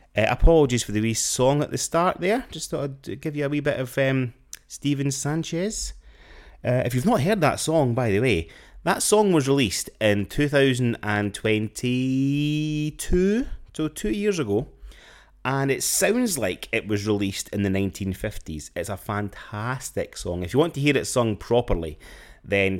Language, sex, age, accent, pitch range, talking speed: English, male, 30-49, British, 90-135 Hz, 170 wpm